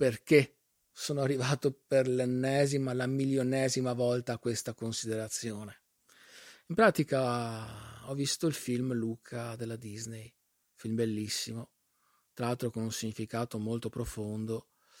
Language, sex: Italian, male